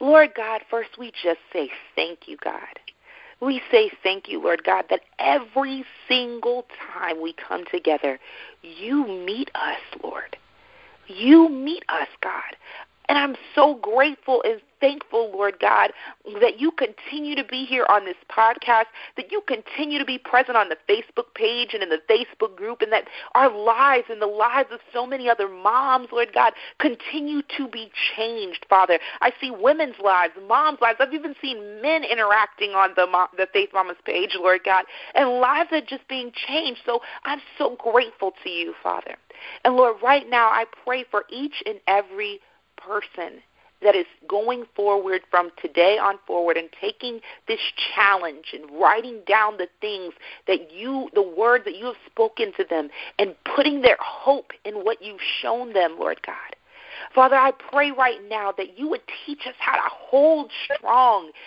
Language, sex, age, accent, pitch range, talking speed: English, female, 40-59, American, 210-300 Hz, 170 wpm